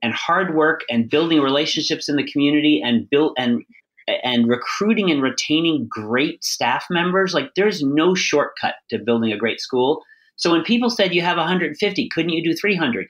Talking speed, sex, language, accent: 180 wpm, male, English, American